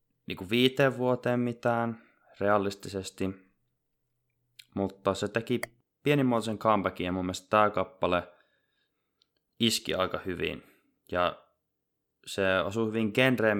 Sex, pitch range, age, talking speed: male, 90-115 Hz, 20-39, 95 wpm